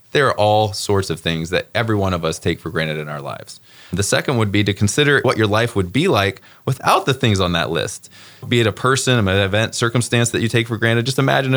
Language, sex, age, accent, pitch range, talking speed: English, male, 20-39, American, 100-125 Hz, 255 wpm